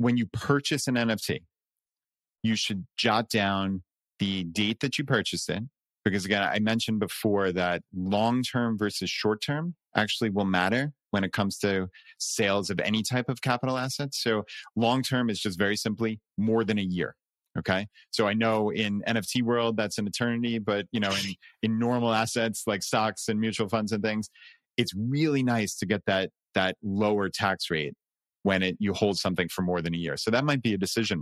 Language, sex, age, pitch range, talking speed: English, male, 30-49, 95-115 Hz, 190 wpm